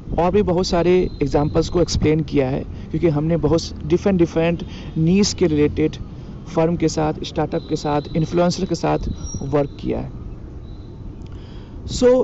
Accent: native